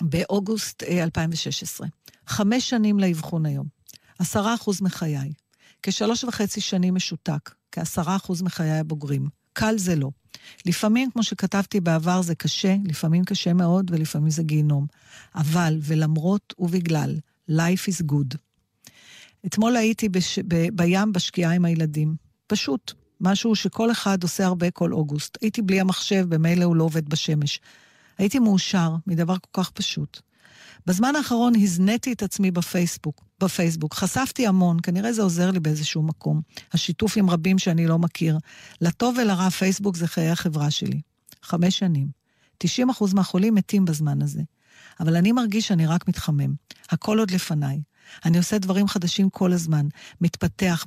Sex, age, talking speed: female, 50-69, 140 wpm